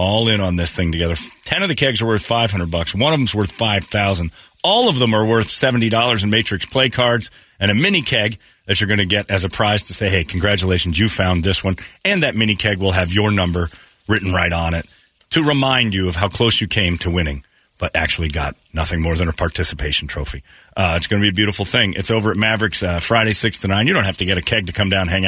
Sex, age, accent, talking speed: male, 40-59, American, 260 wpm